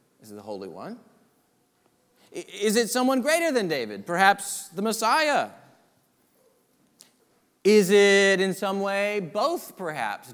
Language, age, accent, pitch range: English, 40-59, American, 170-225 Hz